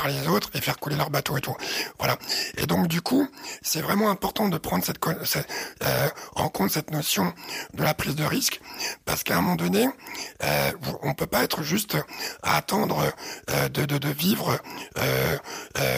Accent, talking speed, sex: French, 200 wpm, male